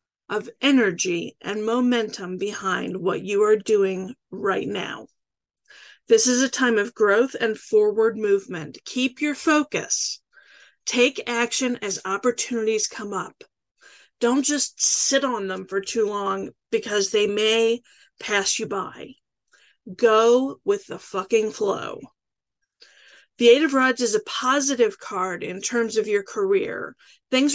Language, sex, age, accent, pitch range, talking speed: English, female, 40-59, American, 210-275 Hz, 135 wpm